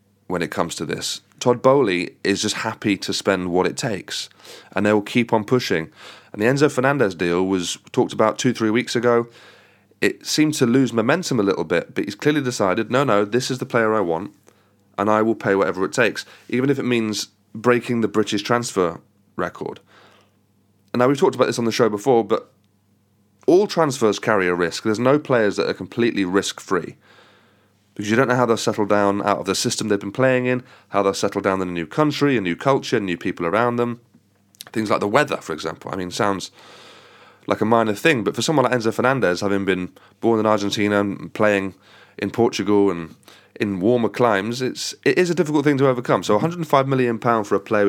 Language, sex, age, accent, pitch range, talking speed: English, male, 30-49, British, 100-125 Hz, 215 wpm